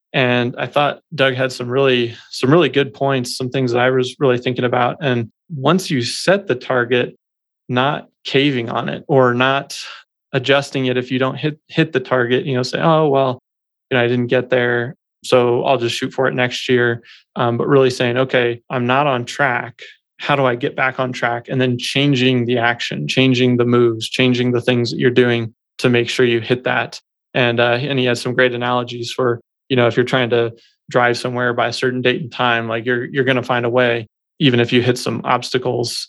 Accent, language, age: American, English, 20-39